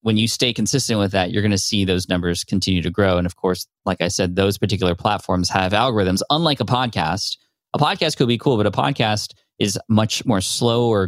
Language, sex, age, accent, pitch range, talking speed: English, male, 20-39, American, 90-110 Hz, 215 wpm